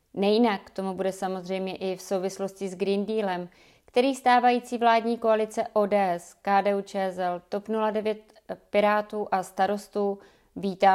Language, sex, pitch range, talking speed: Czech, female, 185-210 Hz, 130 wpm